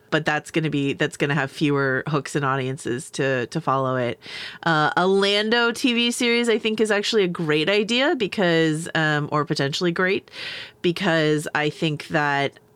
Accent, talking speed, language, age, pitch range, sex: American, 180 wpm, English, 30-49, 145-180 Hz, female